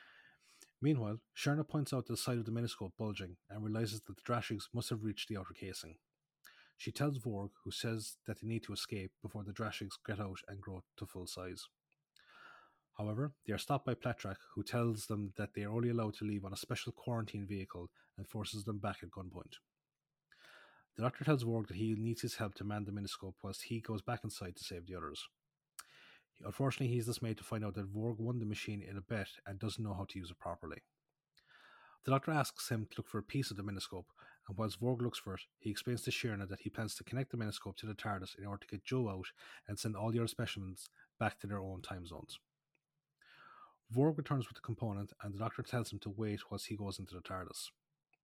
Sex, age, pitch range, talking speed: male, 30-49, 100-120 Hz, 225 wpm